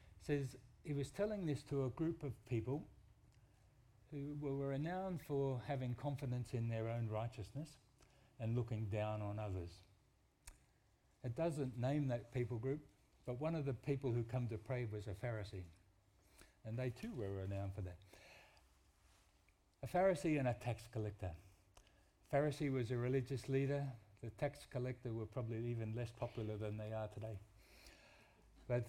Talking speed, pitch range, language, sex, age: 155 wpm, 100-130 Hz, English, male, 60-79